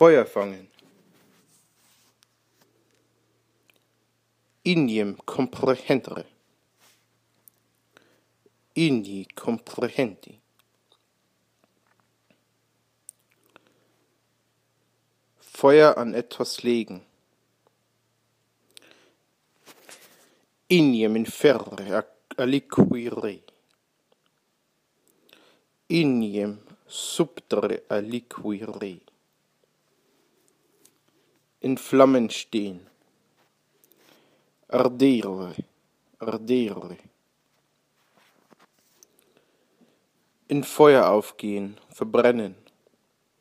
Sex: male